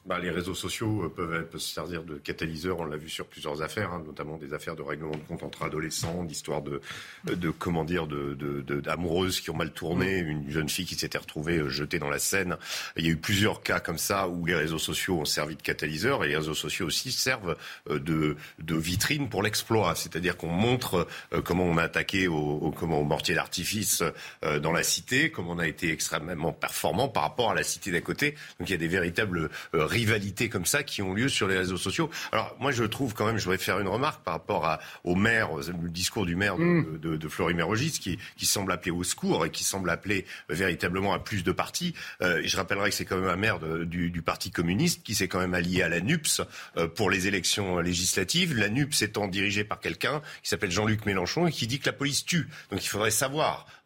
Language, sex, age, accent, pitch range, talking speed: French, male, 50-69, French, 85-105 Hz, 230 wpm